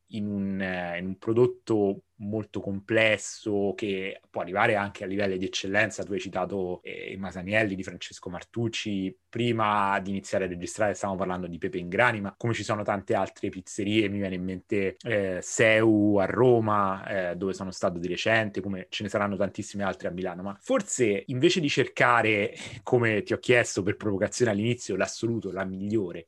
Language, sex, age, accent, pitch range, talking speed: Italian, male, 30-49, native, 95-115 Hz, 180 wpm